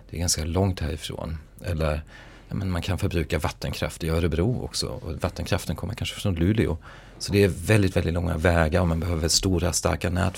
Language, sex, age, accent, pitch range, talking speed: English, male, 40-59, Swedish, 85-100 Hz, 185 wpm